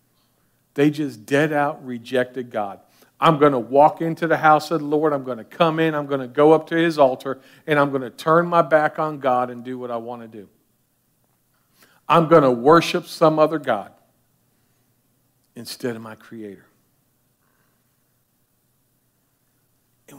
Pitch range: 125-170 Hz